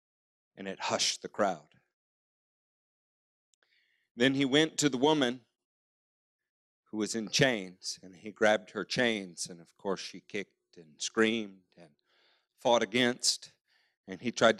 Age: 40-59